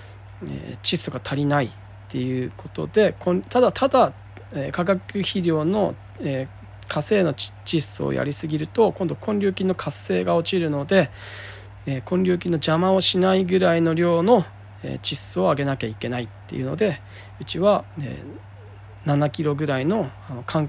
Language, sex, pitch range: Japanese, male, 100-170 Hz